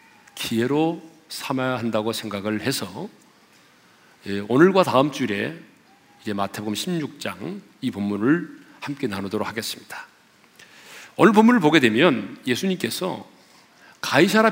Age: 40-59